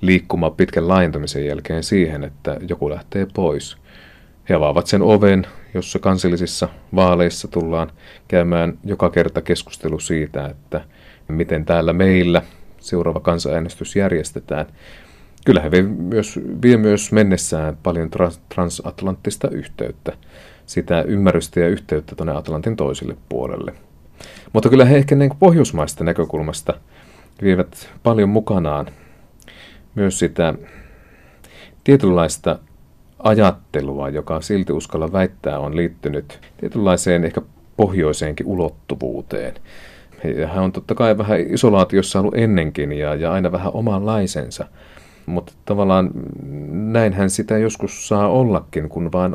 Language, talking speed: Finnish, 115 wpm